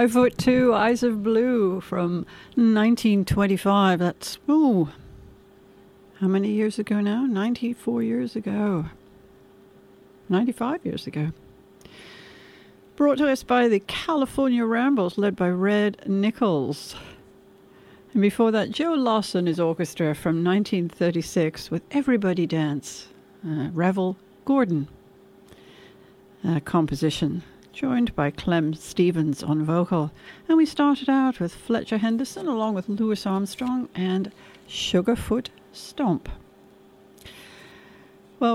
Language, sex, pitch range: English, female, 170-235 Hz